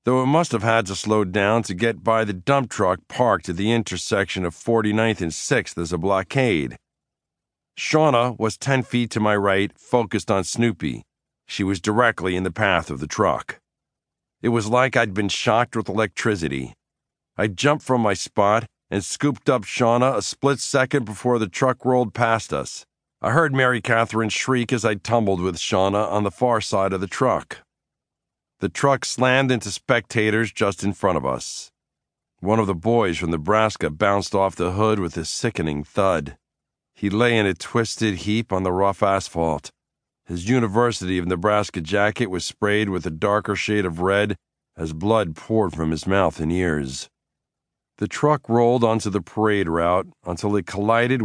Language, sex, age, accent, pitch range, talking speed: English, male, 50-69, American, 95-115 Hz, 180 wpm